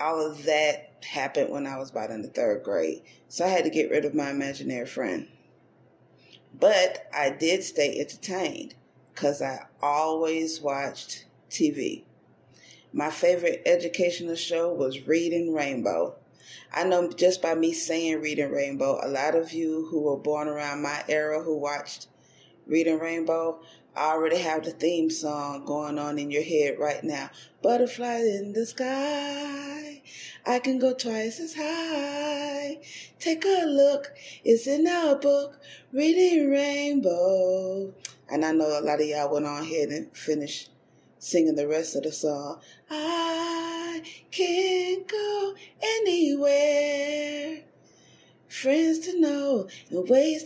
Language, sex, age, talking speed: English, female, 30-49, 140 wpm